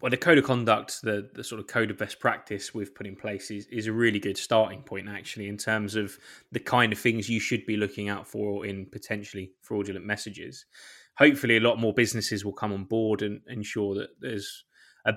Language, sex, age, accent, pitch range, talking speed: English, male, 20-39, British, 100-115 Hz, 220 wpm